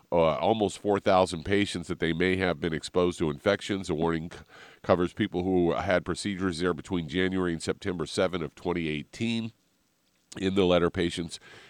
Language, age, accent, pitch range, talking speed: English, 50-69, American, 80-95 Hz, 160 wpm